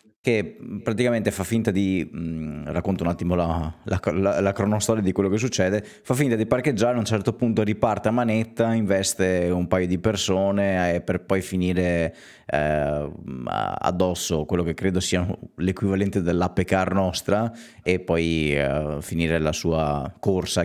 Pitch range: 80-100 Hz